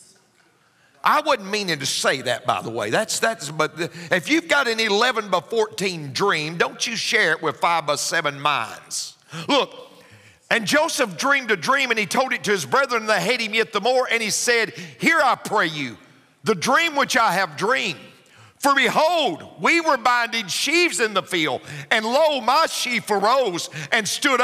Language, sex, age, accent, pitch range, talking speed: English, male, 50-69, American, 170-250 Hz, 190 wpm